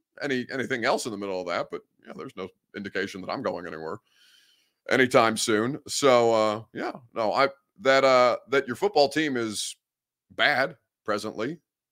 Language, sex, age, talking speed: English, male, 30-49, 165 wpm